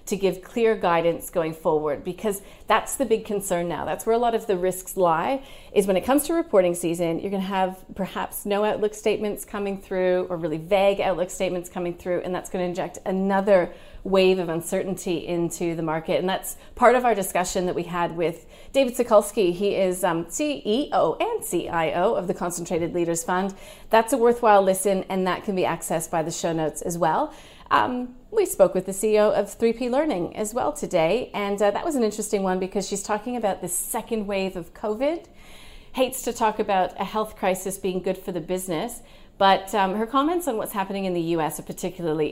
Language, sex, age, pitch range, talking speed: English, female, 30-49, 180-220 Hz, 205 wpm